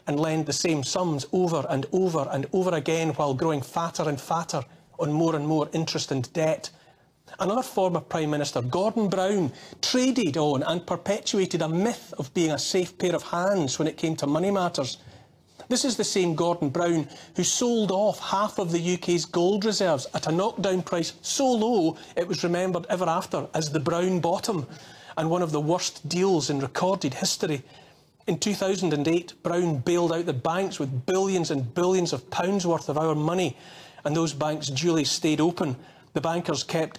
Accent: British